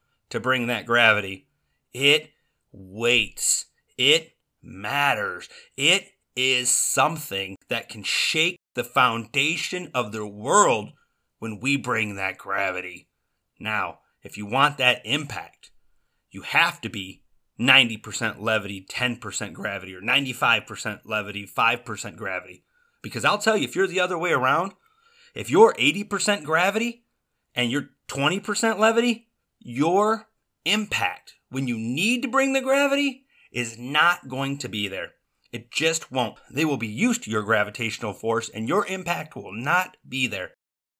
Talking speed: 140 wpm